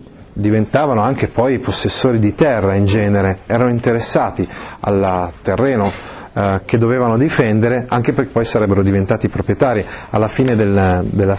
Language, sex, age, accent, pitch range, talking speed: Italian, male, 30-49, native, 100-135 Hz, 130 wpm